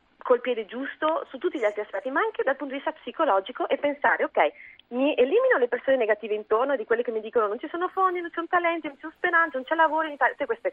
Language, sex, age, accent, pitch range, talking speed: Italian, female, 40-59, native, 225-360 Hz, 270 wpm